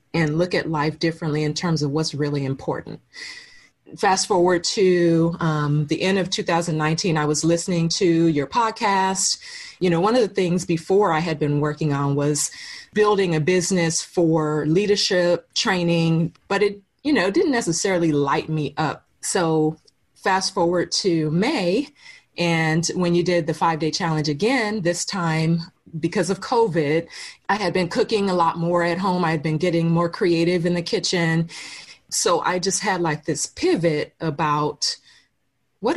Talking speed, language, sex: 165 wpm, English, female